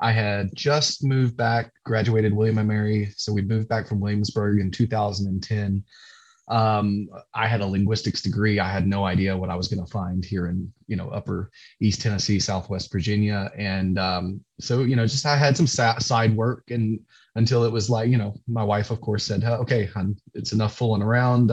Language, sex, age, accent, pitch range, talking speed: English, male, 20-39, American, 100-115 Hz, 205 wpm